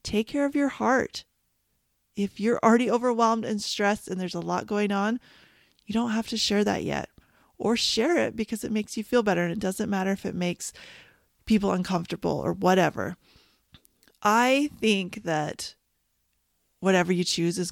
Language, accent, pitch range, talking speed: English, American, 180-225 Hz, 175 wpm